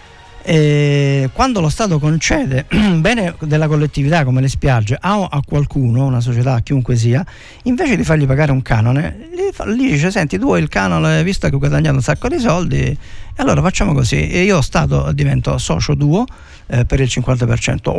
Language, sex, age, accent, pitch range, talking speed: Italian, male, 50-69, native, 125-155 Hz, 175 wpm